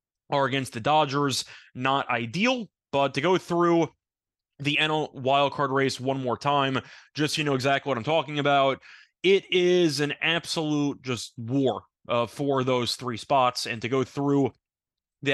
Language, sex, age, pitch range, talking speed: English, male, 20-39, 130-155 Hz, 165 wpm